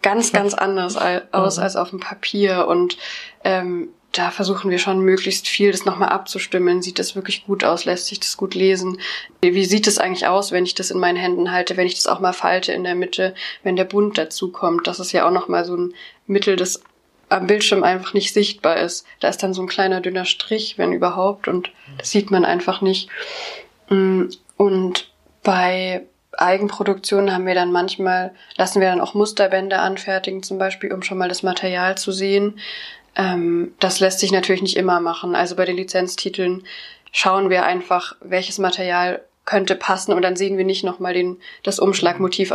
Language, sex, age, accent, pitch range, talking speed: German, female, 20-39, German, 180-195 Hz, 190 wpm